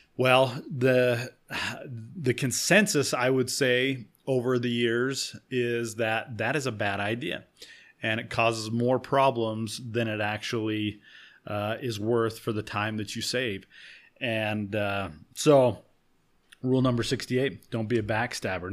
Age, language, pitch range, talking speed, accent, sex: 30-49, English, 110-130 Hz, 140 wpm, American, male